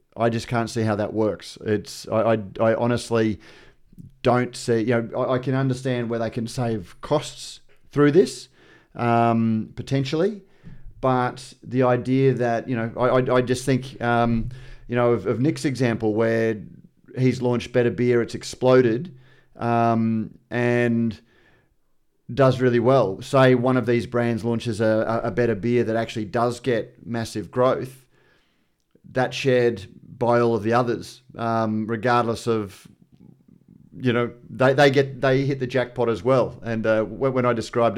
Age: 30-49